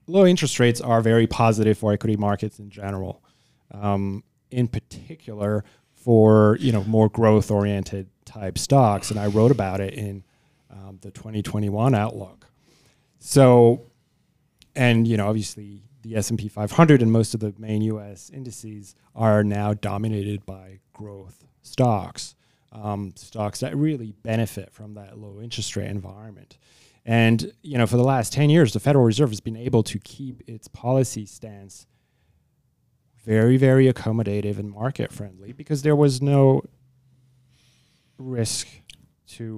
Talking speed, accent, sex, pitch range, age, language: 145 wpm, American, male, 105-125 Hz, 30-49, English